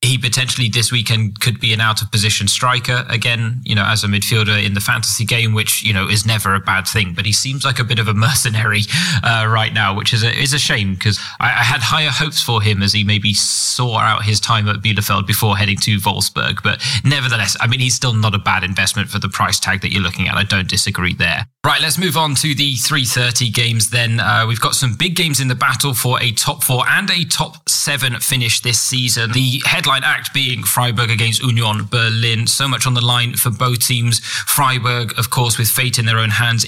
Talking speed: 235 wpm